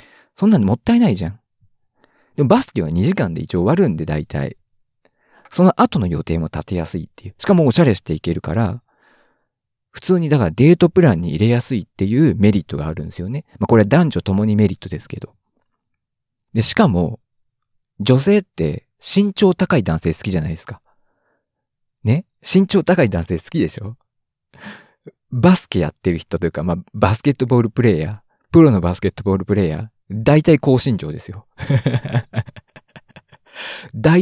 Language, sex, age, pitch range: Japanese, male, 50-69, 95-155 Hz